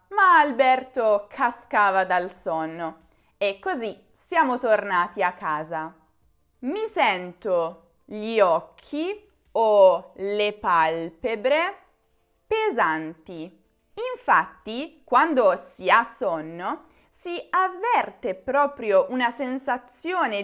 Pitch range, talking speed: 195-330 Hz, 85 wpm